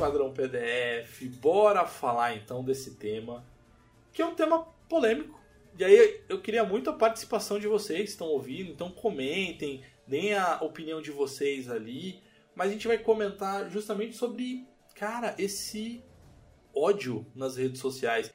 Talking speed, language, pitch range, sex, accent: 145 wpm, Portuguese, 130-210 Hz, male, Brazilian